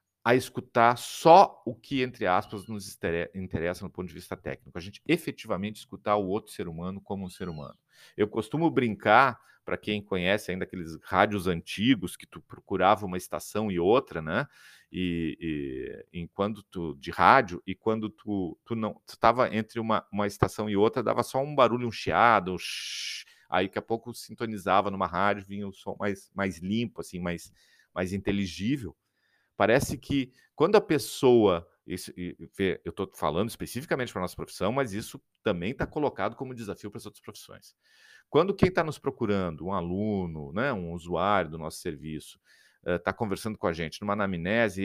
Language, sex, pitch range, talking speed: Portuguese, male, 90-120 Hz, 175 wpm